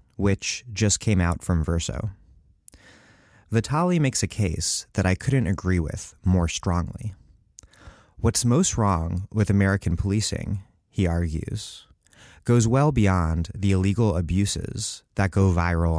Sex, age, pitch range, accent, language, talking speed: male, 30-49, 90-115 Hz, American, English, 130 wpm